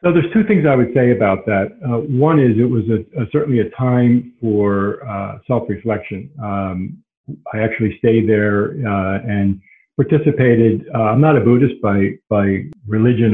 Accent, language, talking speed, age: American, English, 170 wpm, 50-69